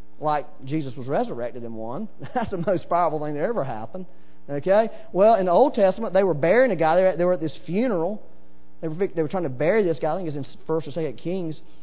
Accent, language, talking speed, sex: American, English, 250 wpm, male